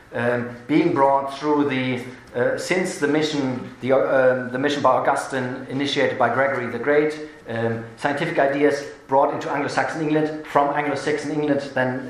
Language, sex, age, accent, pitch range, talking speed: English, male, 40-59, German, 125-150 Hz, 150 wpm